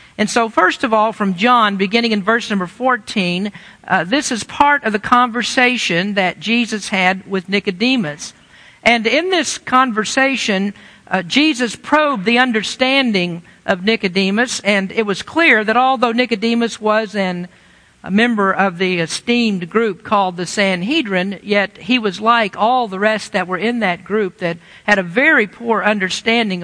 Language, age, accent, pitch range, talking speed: English, 50-69, American, 195-245 Hz, 160 wpm